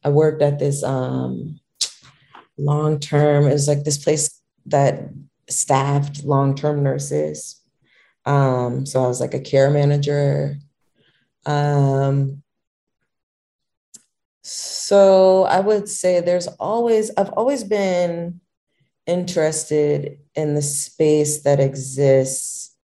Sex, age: female, 30-49